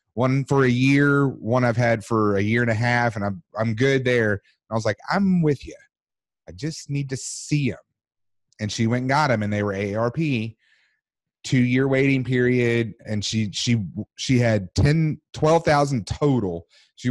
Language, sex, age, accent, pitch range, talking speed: English, male, 30-49, American, 105-135 Hz, 180 wpm